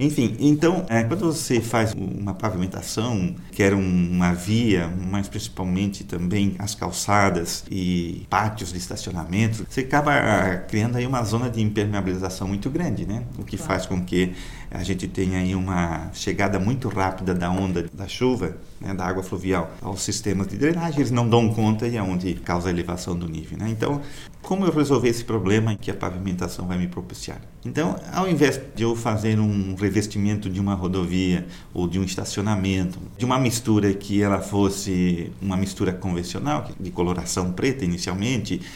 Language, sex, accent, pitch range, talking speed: Portuguese, male, Brazilian, 95-120 Hz, 165 wpm